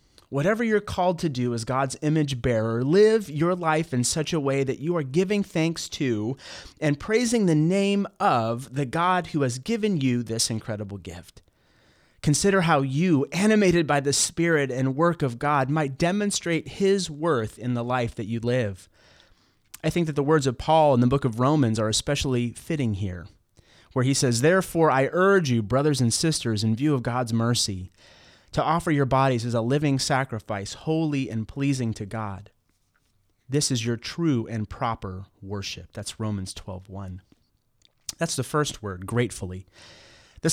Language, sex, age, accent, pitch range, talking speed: English, male, 30-49, American, 110-160 Hz, 175 wpm